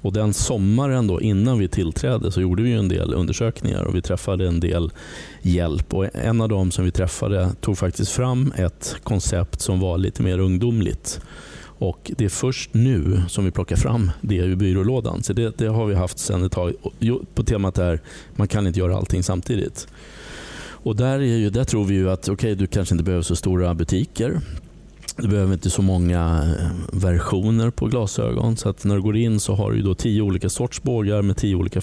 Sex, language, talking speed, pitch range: male, Swedish, 205 wpm, 90-110 Hz